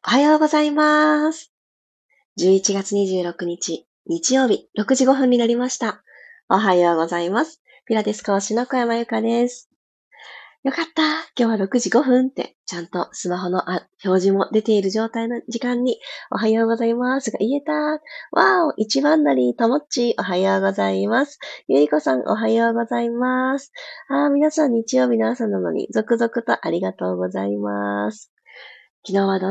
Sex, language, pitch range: female, Japanese, 190-270 Hz